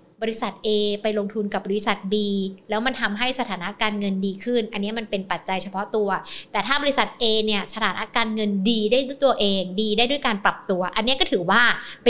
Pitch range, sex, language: 205-260 Hz, female, Thai